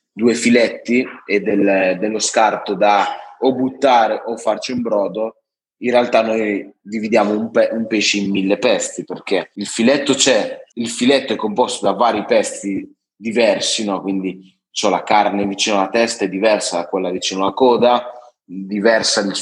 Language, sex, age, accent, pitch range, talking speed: Italian, male, 20-39, native, 100-115 Hz, 165 wpm